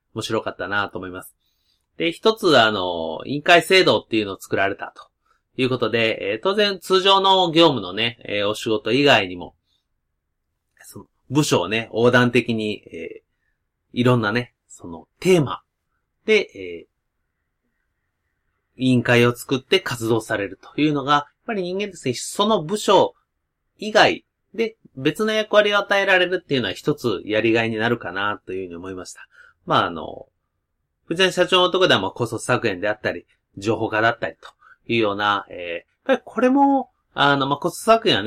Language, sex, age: Japanese, male, 30-49